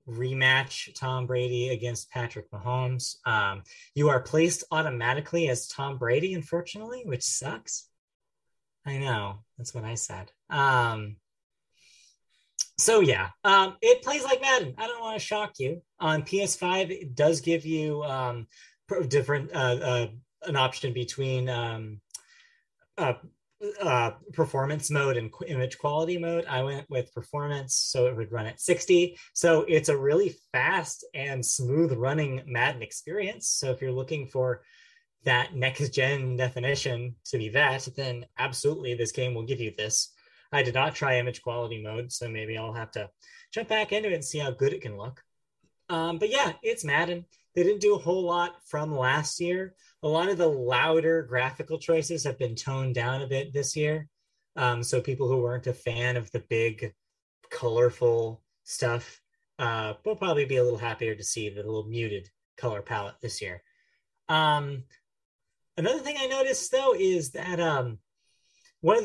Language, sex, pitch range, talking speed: English, male, 125-175 Hz, 165 wpm